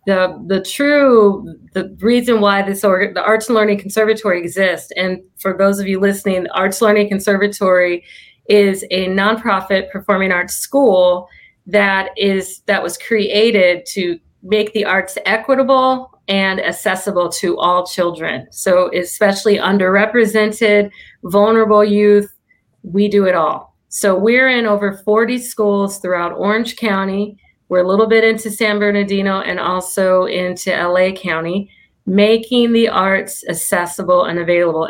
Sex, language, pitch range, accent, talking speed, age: female, English, 185-215 Hz, American, 140 wpm, 30-49